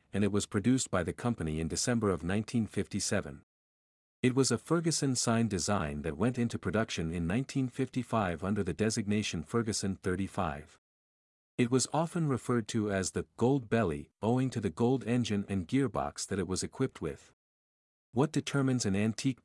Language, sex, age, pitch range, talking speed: English, male, 50-69, 95-125 Hz, 160 wpm